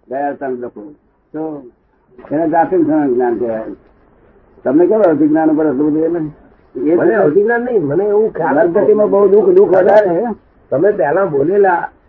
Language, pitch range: Gujarati, 165-235 Hz